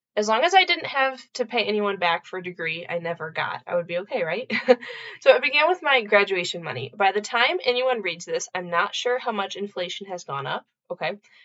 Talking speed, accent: 230 wpm, American